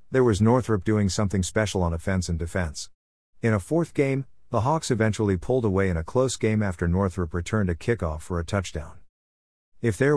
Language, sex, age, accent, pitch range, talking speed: English, male, 50-69, American, 85-115 Hz, 195 wpm